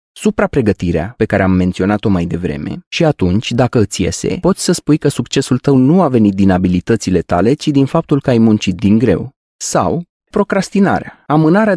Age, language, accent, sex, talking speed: 30-49, Romanian, native, male, 180 wpm